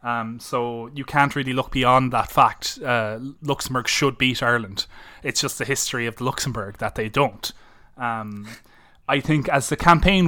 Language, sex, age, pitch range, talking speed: English, male, 20-39, 120-135 Hz, 170 wpm